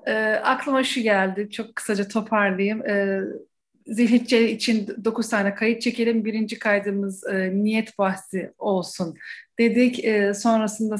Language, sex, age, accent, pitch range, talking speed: Turkish, female, 40-59, native, 220-320 Hz, 125 wpm